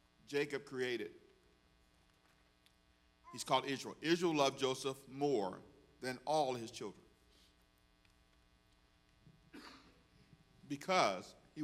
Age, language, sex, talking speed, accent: 50-69, English, male, 75 wpm, American